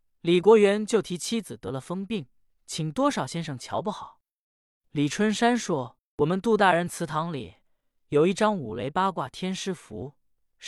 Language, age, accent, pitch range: Chinese, 20-39, native, 135-200 Hz